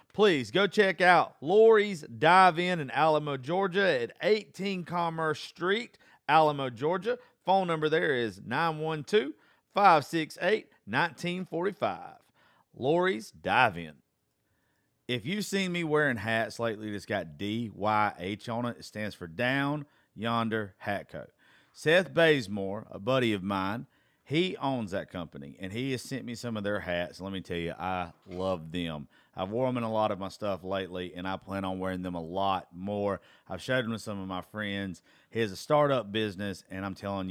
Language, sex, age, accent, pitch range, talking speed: English, male, 40-59, American, 95-150 Hz, 165 wpm